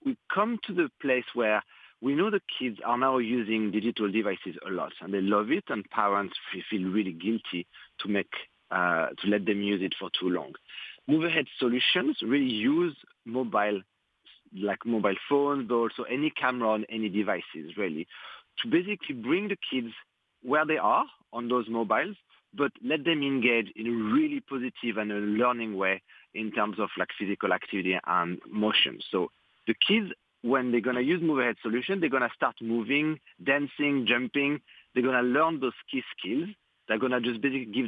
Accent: French